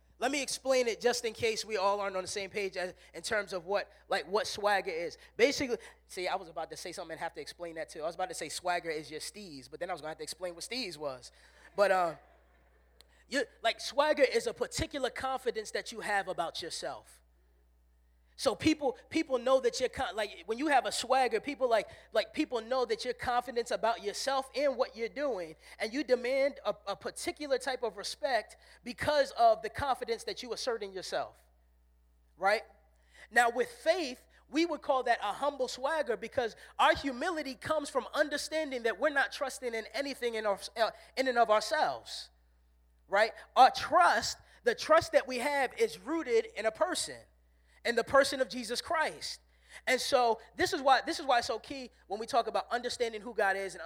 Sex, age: male, 20-39